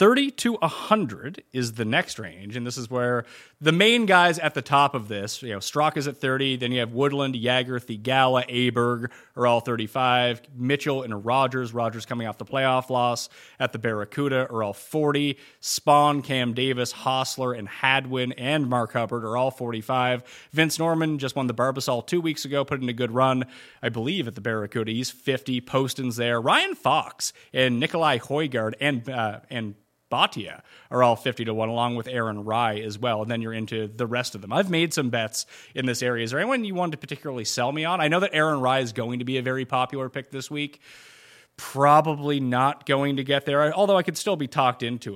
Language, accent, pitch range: English, American, 120-145 Hz